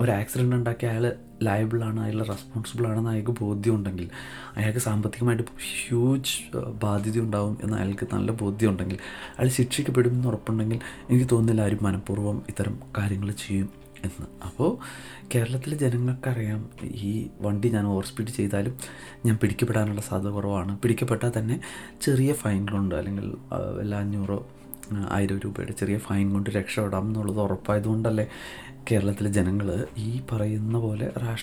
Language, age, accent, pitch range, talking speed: Malayalam, 30-49, native, 105-125 Hz, 115 wpm